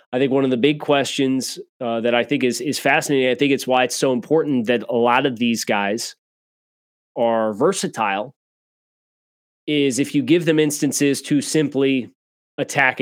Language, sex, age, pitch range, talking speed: English, male, 30-49, 120-145 Hz, 175 wpm